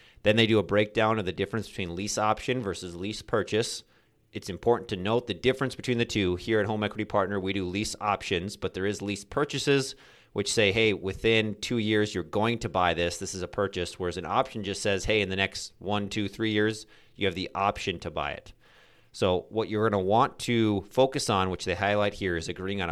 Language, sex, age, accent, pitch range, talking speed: English, male, 30-49, American, 95-115 Hz, 230 wpm